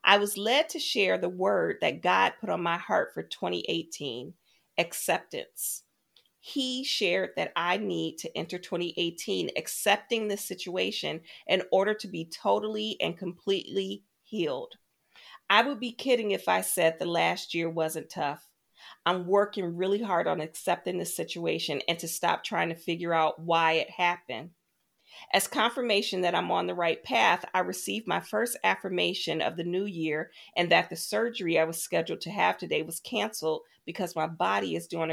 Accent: American